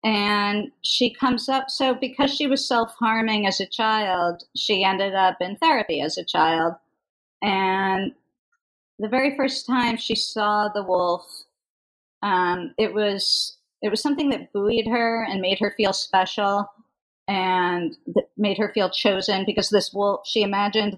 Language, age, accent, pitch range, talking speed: English, 40-59, American, 180-220 Hz, 155 wpm